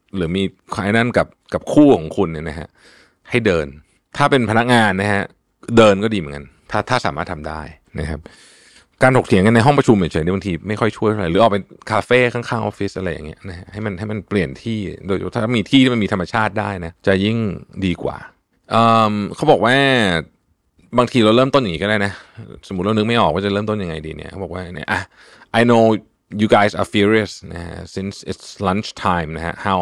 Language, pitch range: Thai, 90-115 Hz